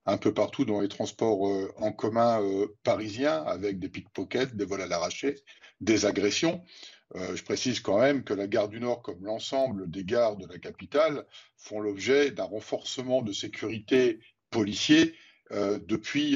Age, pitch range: 50-69, 105-140 Hz